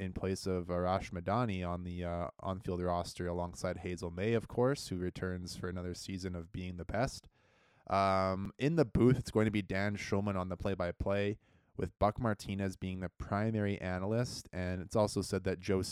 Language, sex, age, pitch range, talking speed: English, male, 20-39, 90-105 Hz, 190 wpm